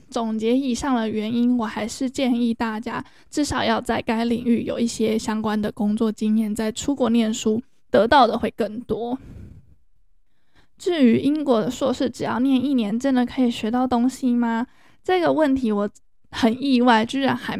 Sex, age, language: female, 10-29, Chinese